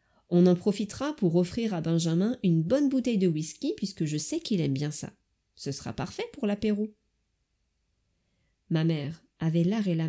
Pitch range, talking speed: 155-205 Hz, 180 wpm